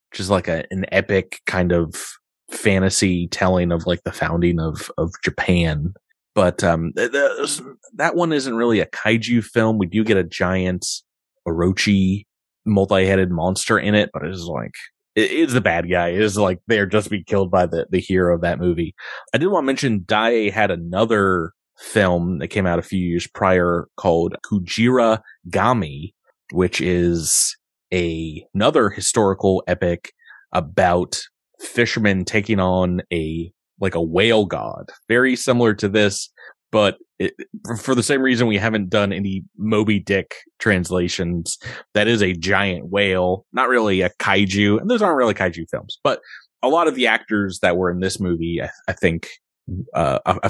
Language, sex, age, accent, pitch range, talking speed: English, male, 30-49, American, 90-110 Hz, 165 wpm